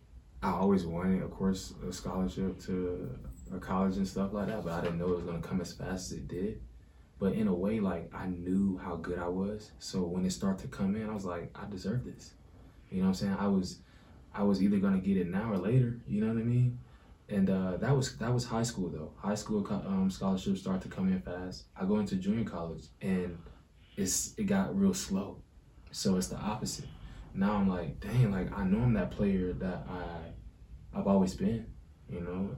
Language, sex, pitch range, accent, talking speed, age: English, male, 90-115 Hz, American, 225 wpm, 20-39